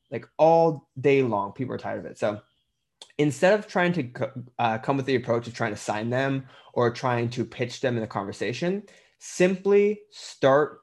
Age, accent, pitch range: 20-39, American, 120-145 Hz